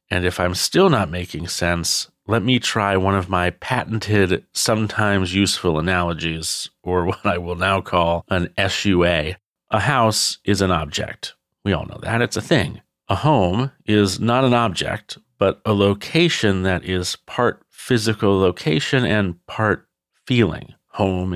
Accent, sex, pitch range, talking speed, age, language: American, male, 90-110 Hz, 155 wpm, 40-59, English